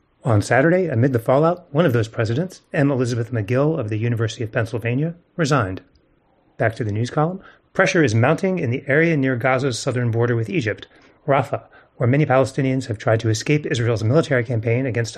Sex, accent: male, American